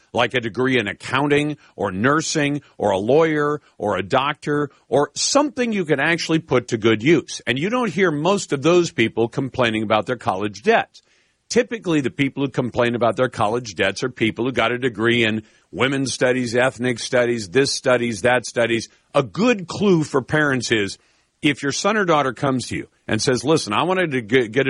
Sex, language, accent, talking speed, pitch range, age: male, English, American, 195 wpm, 120-160 Hz, 50-69